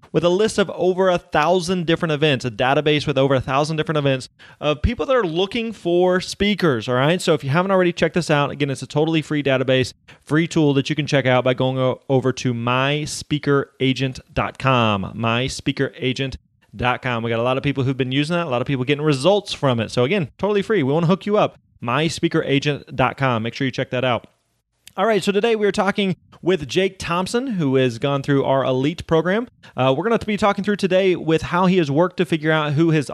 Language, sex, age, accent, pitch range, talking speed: English, male, 30-49, American, 130-175 Hz, 225 wpm